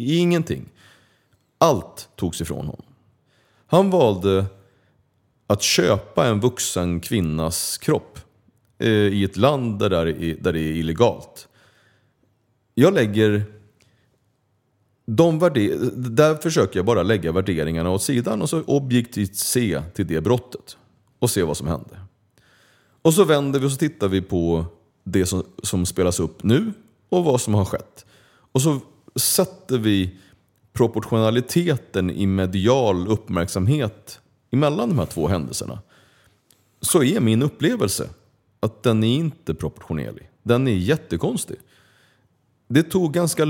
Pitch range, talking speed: 95-130 Hz, 125 wpm